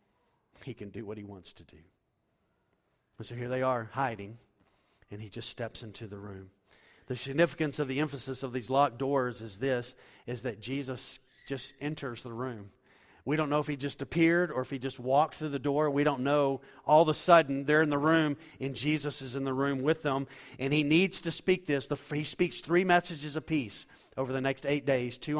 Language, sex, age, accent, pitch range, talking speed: English, male, 40-59, American, 135-170 Hz, 215 wpm